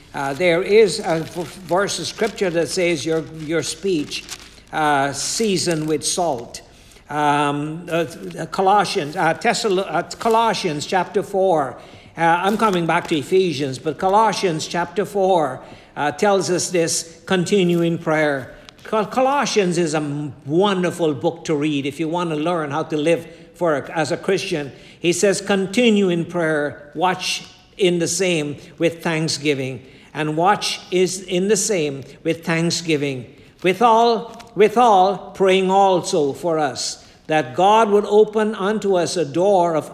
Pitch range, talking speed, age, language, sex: 155-195 Hz, 150 wpm, 60-79, English, male